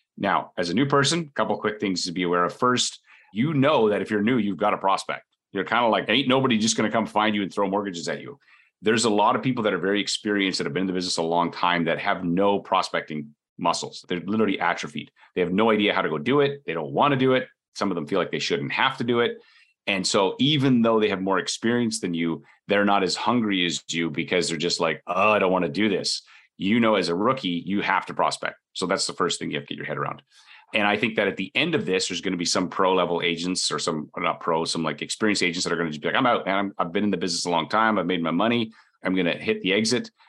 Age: 30-49